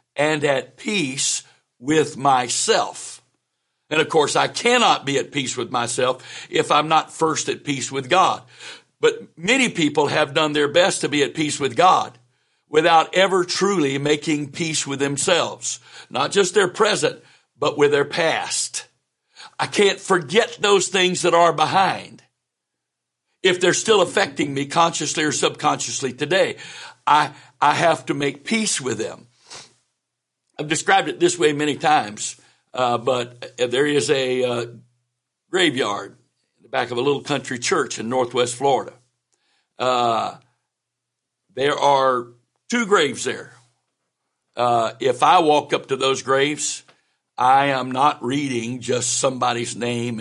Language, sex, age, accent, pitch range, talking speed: English, male, 60-79, American, 125-170 Hz, 145 wpm